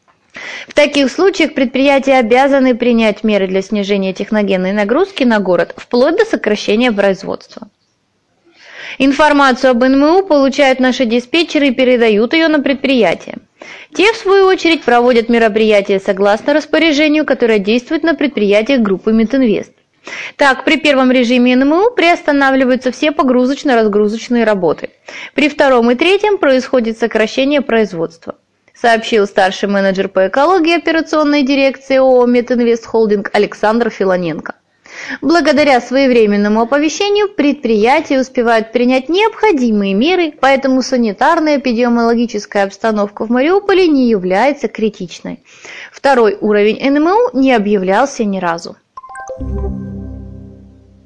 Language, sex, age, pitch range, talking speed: Russian, female, 20-39, 215-290 Hz, 110 wpm